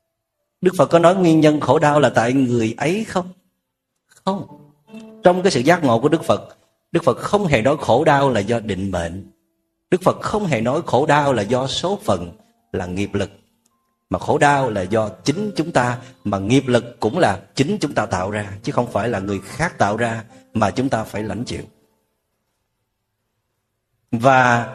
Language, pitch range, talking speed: Vietnamese, 110-160 Hz, 195 wpm